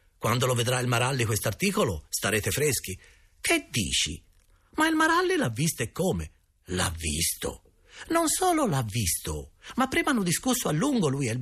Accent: native